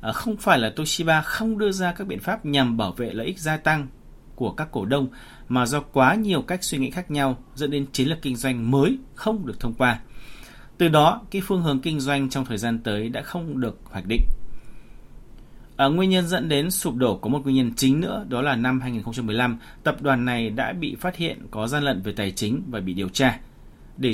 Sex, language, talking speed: male, Vietnamese, 230 wpm